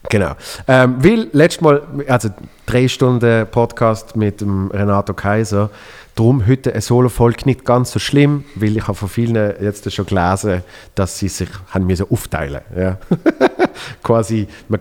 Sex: male